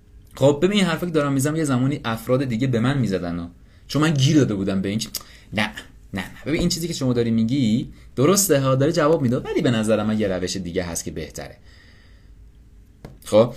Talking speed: 195 wpm